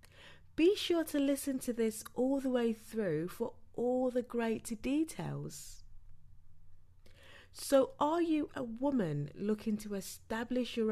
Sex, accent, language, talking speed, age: female, British, English, 130 wpm, 20-39